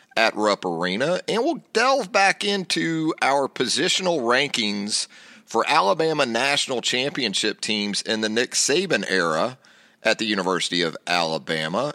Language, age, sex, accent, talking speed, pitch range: English, 40-59, male, American, 130 wpm, 110-150 Hz